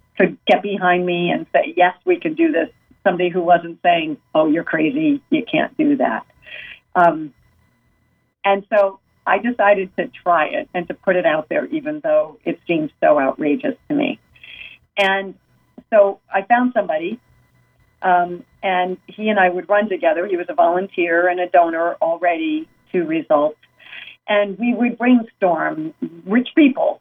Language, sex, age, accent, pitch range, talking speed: English, female, 50-69, American, 180-275 Hz, 160 wpm